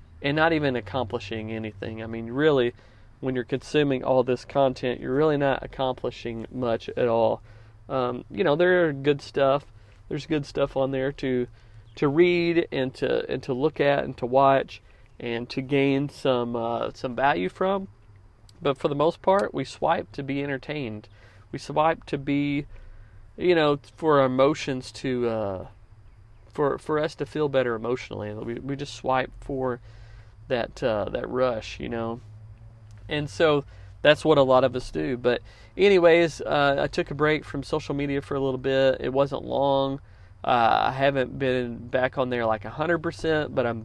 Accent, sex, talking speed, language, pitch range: American, male, 180 wpm, English, 110-145 Hz